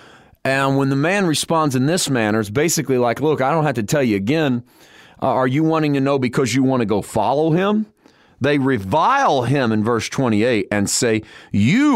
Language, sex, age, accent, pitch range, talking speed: English, male, 40-59, American, 110-145 Hz, 205 wpm